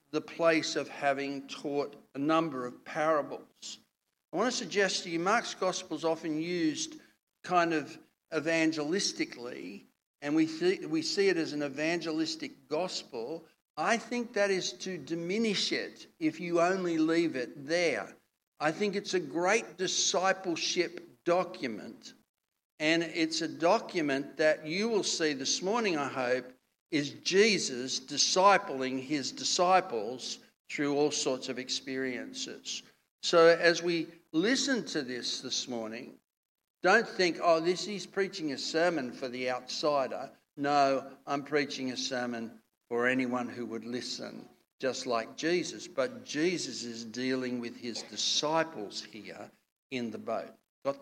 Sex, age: male, 60-79